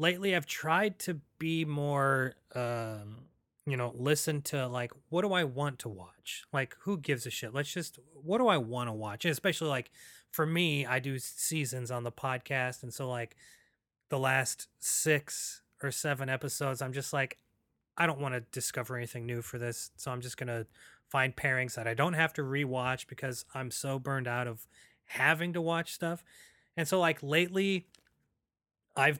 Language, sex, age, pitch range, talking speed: English, male, 30-49, 125-160 Hz, 185 wpm